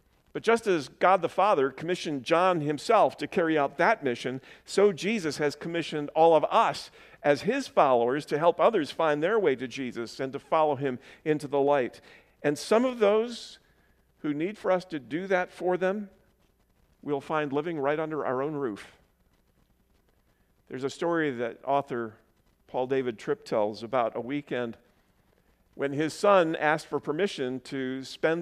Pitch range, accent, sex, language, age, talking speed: 130-165 Hz, American, male, English, 50-69, 170 wpm